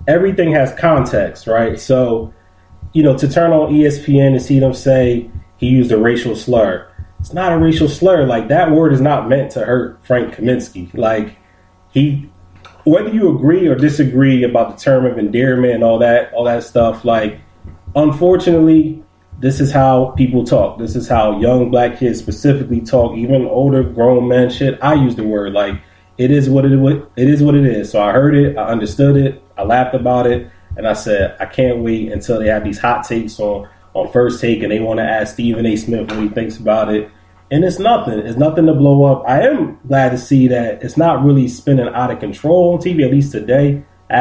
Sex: male